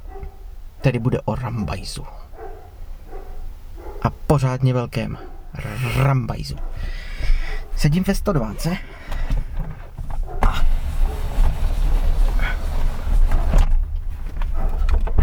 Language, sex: Czech, male